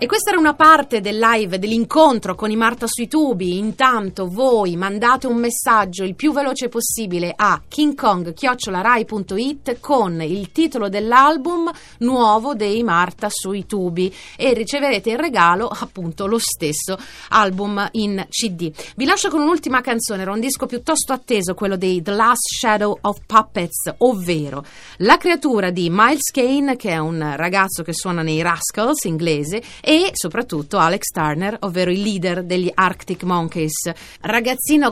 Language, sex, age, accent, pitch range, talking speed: Italian, female, 30-49, native, 180-240 Hz, 150 wpm